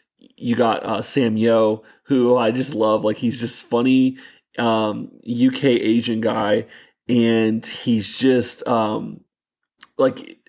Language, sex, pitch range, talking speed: English, male, 115-130 Hz, 125 wpm